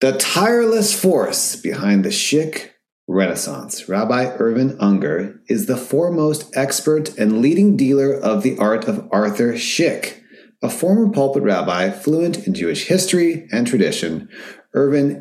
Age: 30-49